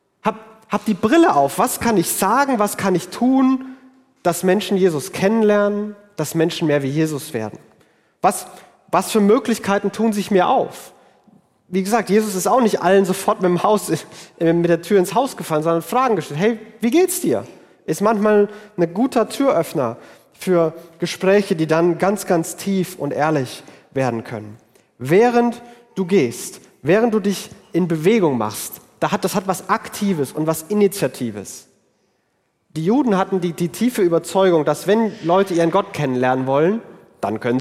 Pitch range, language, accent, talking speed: 165-220 Hz, German, German, 165 wpm